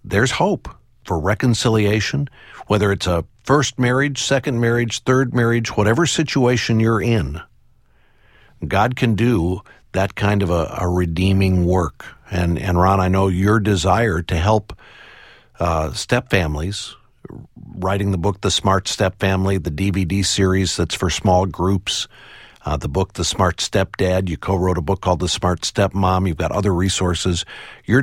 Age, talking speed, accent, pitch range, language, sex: 50-69, 160 wpm, American, 90-105 Hz, English, male